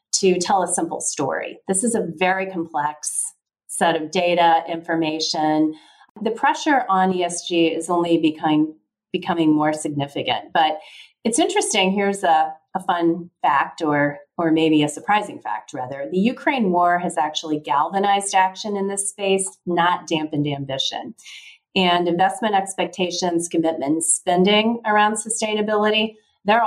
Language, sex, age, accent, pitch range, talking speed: English, female, 30-49, American, 160-195 Hz, 135 wpm